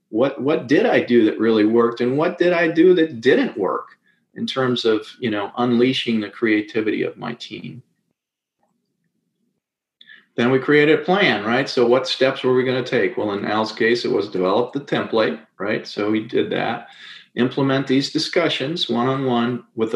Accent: American